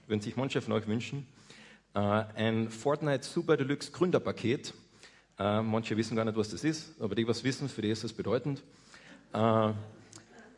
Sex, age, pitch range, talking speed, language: male, 40-59, 110-140 Hz, 170 wpm, German